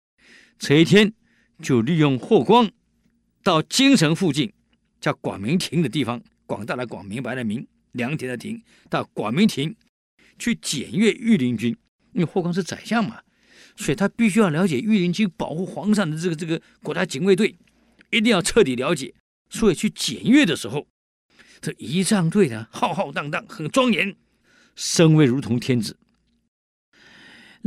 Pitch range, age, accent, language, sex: 160-220 Hz, 50-69, native, Chinese, male